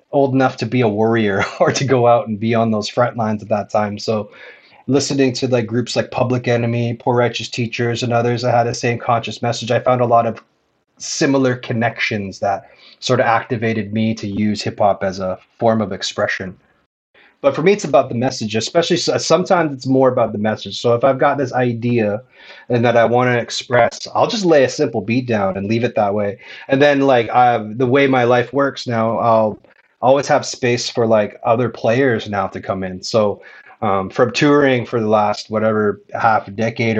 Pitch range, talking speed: 110-130 Hz, 210 wpm